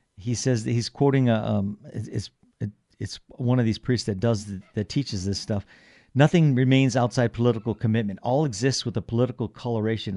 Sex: male